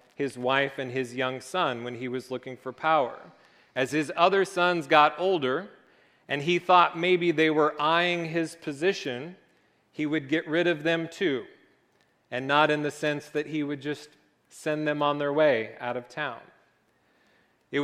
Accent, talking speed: American, 175 wpm